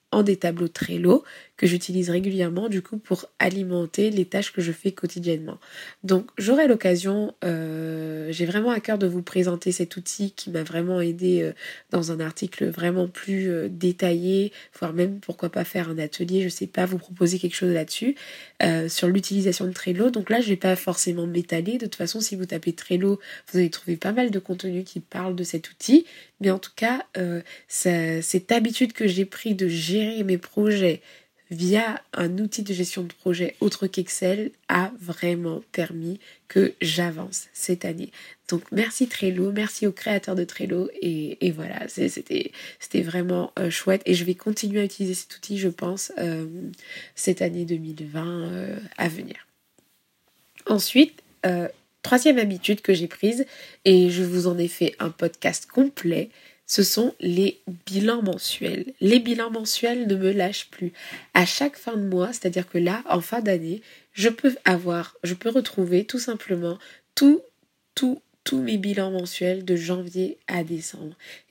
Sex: female